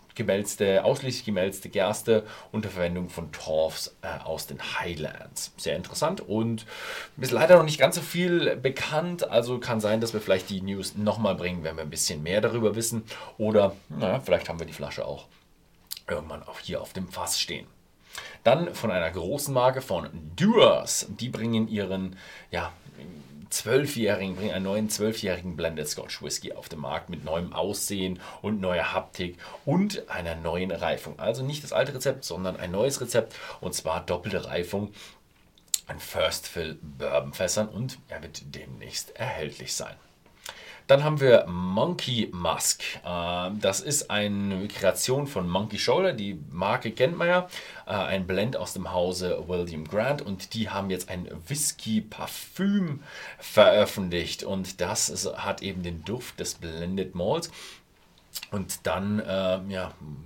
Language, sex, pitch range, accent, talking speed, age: German, male, 90-115 Hz, German, 155 wpm, 40-59